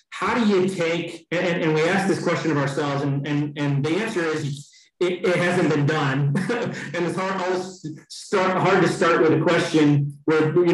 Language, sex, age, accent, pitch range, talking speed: English, male, 30-49, American, 145-170 Hz, 195 wpm